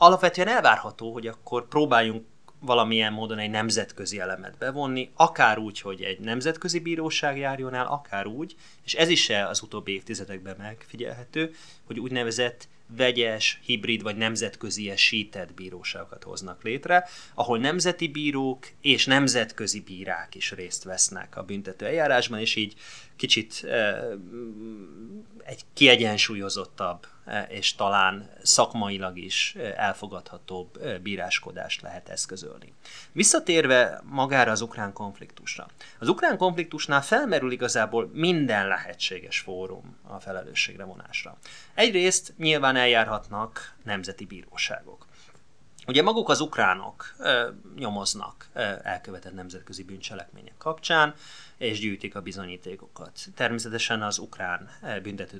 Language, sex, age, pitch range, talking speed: Hungarian, male, 30-49, 100-140 Hz, 115 wpm